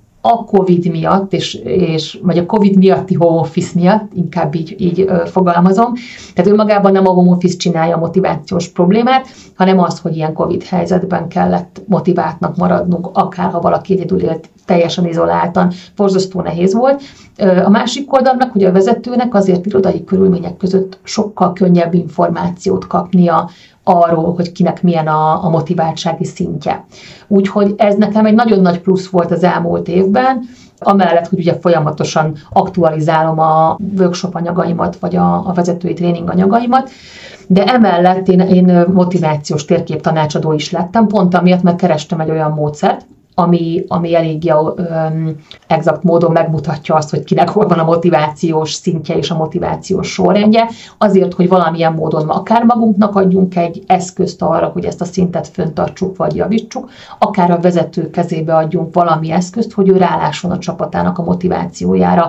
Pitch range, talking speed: 165-190 Hz, 145 wpm